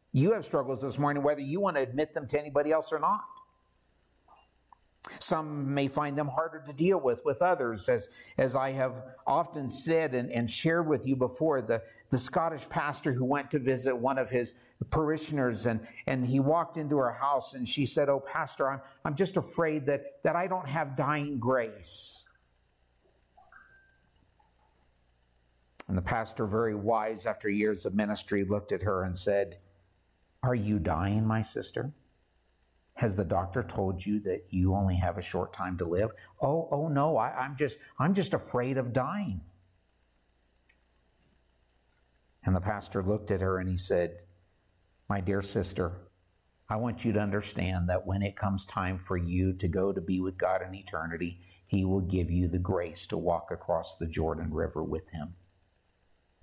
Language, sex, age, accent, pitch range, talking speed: English, male, 50-69, American, 90-140 Hz, 175 wpm